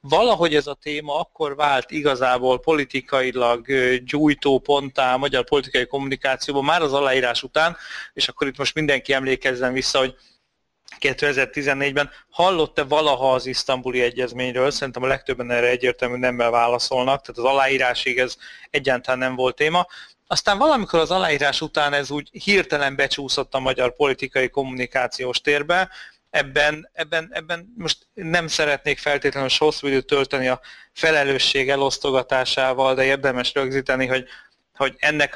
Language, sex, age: Hungarian, male, 30-49